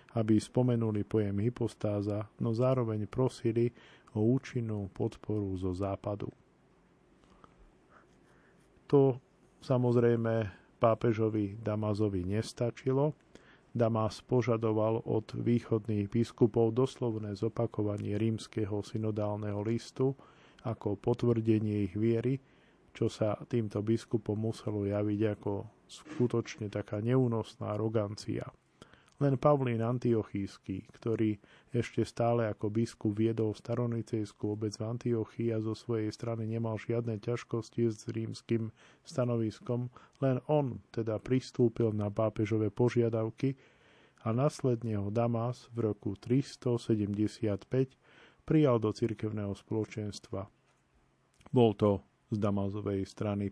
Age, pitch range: 40-59, 105-120 Hz